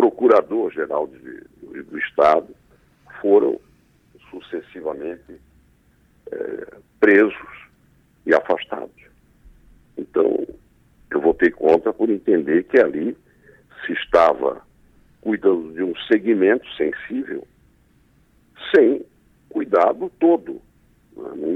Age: 60-79